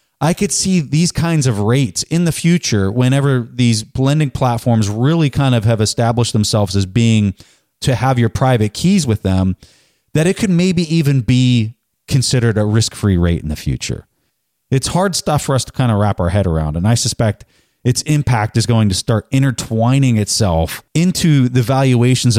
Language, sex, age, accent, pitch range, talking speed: English, male, 30-49, American, 105-140 Hz, 180 wpm